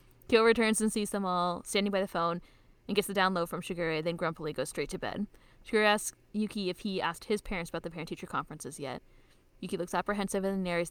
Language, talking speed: English, 220 wpm